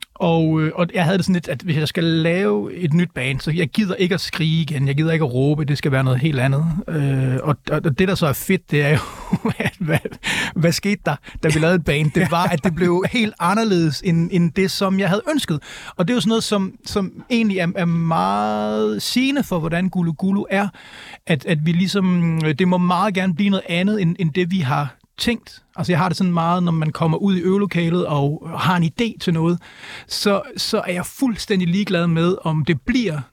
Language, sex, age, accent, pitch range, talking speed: Danish, male, 30-49, native, 160-190 Hz, 235 wpm